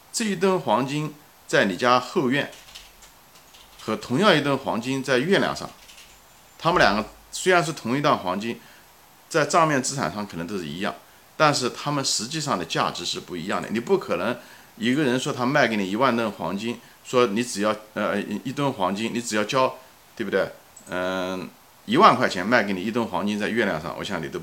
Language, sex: Chinese, male